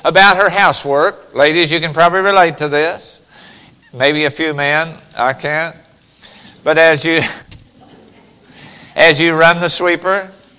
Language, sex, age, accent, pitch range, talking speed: English, male, 50-69, American, 150-195 Hz, 135 wpm